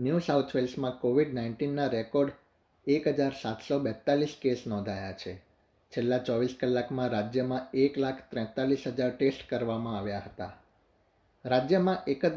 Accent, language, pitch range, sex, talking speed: native, Gujarati, 115-140 Hz, male, 125 wpm